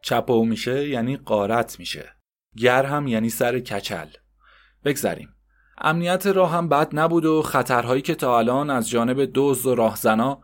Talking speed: 150 wpm